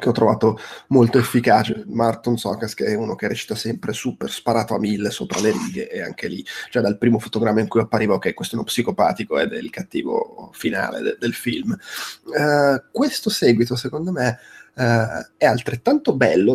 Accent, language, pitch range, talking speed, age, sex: native, Italian, 115-140 Hz, 190 wpm, 20-39, male